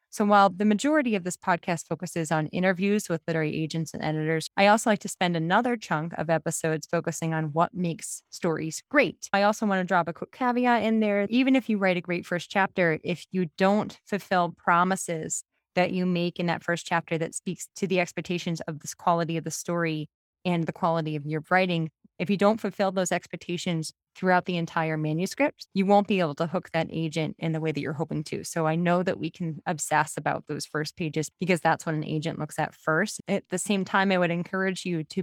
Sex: female